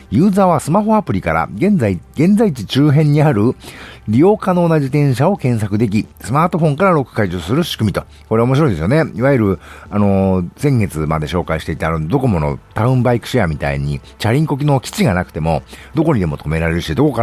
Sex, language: male, Japanese